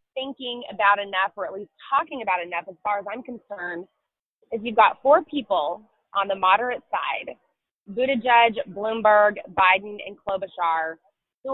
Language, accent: English, American